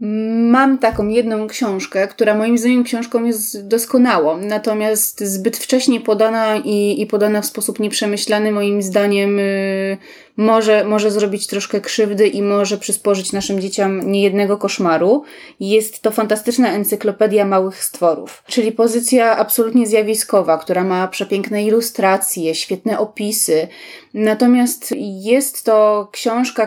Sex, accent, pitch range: female, native, 210-245 Hz